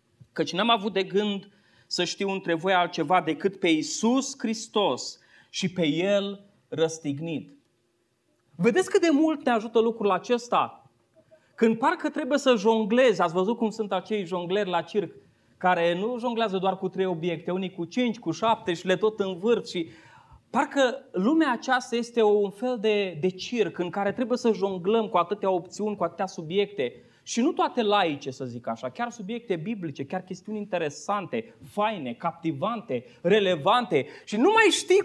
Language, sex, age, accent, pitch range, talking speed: Romanian, male, 20-39, native, 180-250 Hz, 165 wpm